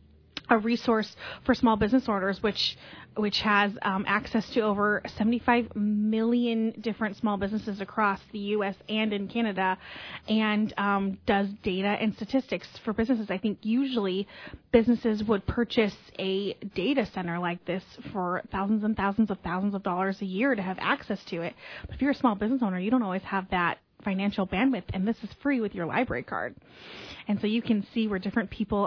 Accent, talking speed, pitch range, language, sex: American, 185 wpm, 195-240 Hz, English, female